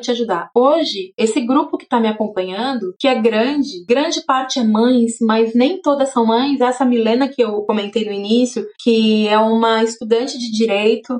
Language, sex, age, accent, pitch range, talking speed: Portuguese, female, 20-39, Brazilian, 220-315 Hz, 180 wpm